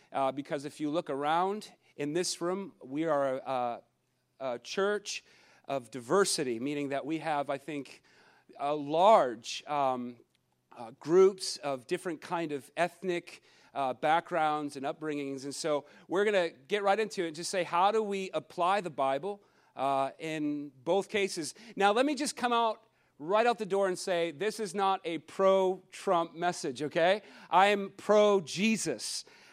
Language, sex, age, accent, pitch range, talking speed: English, male, 40-59, American, 145-195 Hz, 165 wpm